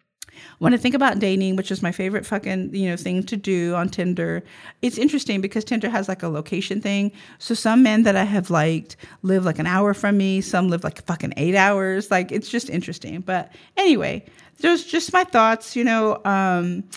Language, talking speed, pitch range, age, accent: English, 205 wpm, 185-245 Hz, 40-59, American